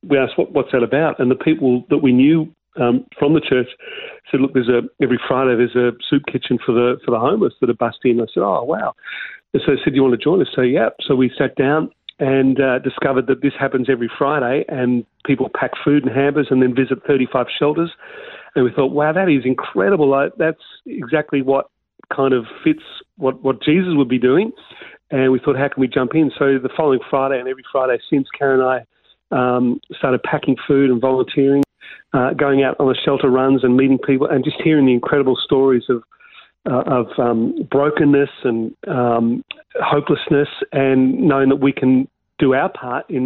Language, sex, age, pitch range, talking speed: English, male, 40-59, 130-145 Hz, 210 wpm